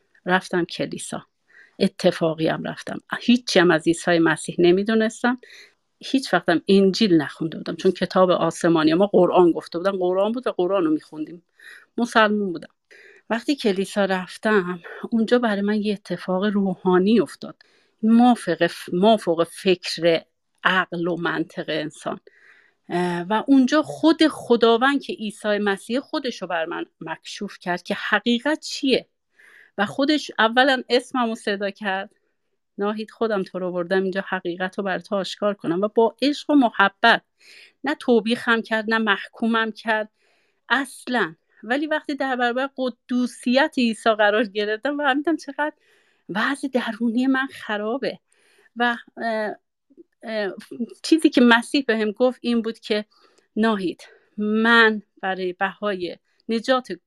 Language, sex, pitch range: Persian, female, 185-250 Hz